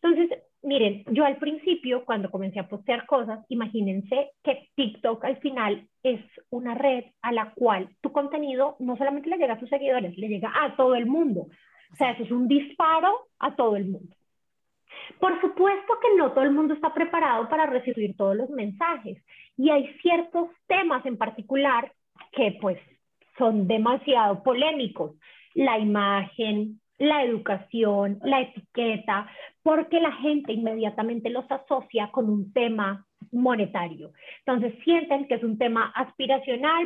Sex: female